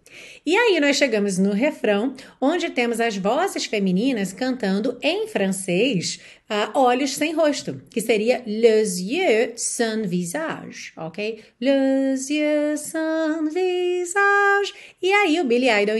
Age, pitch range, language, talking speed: 30-49, 205-285 Hz, Portuguese, 125 wpm